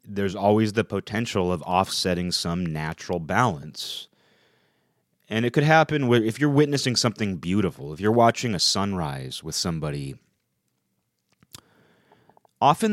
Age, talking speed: 30-49, 125 wpm